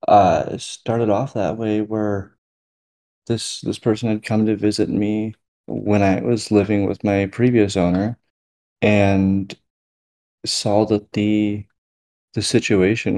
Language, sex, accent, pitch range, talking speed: English, male, American, 95-105 Hz, 130 wpm